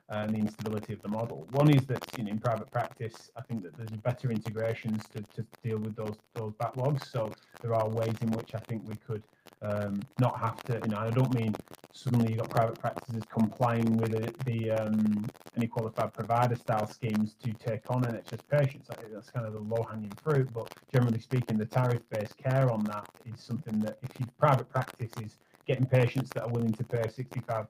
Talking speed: 210 wpm